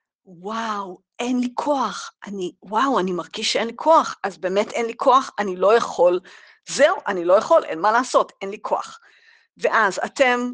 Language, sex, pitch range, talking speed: Hebrew, female, 190-310 Hz, 175 wpm